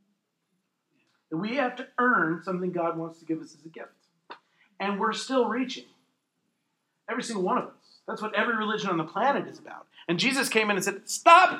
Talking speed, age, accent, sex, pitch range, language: 195 wpm, 40-59, American, male, 190-285 Hz, English